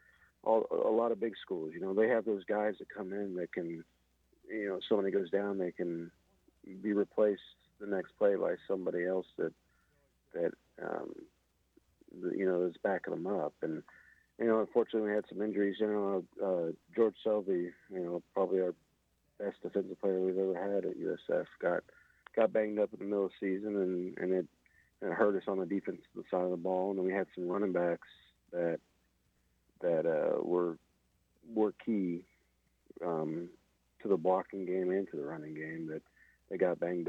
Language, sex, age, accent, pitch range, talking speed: English, male, 50-69, American, 90-115 Hz, 190 wpm